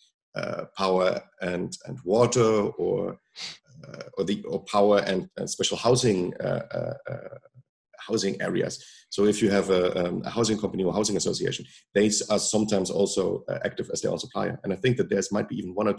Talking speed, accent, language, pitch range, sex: 190 wpm, German, English, 100-115 Hz, male